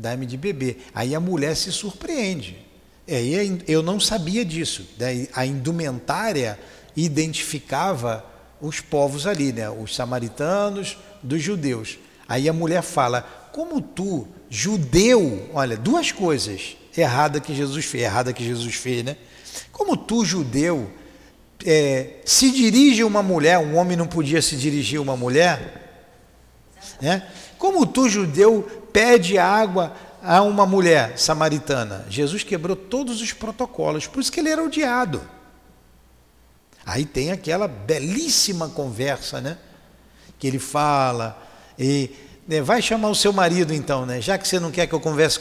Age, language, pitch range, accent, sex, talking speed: 50-69, Portuguese, 135-205 Hz, Brazilian, male, 145 wpm